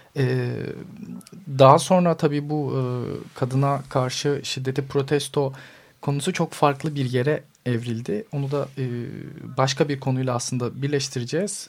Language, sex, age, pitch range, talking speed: Turkish, male, 40-59, 125-150 Hz, 125 wpm